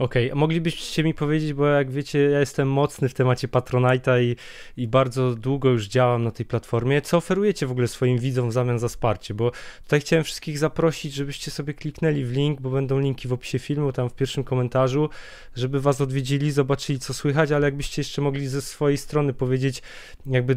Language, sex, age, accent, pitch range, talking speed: Polish, male, 20-39, native, 130-150 Hz, 195 wpm